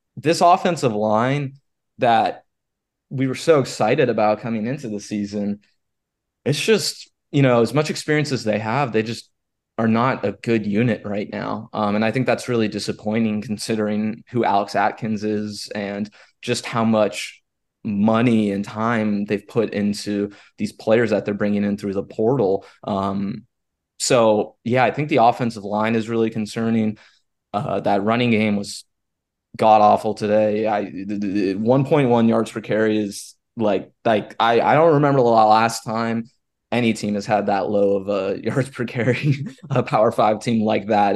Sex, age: male, 20-39